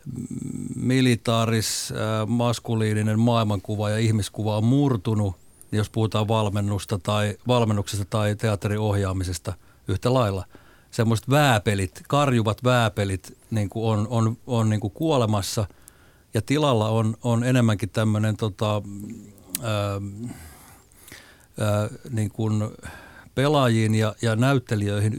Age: 50-69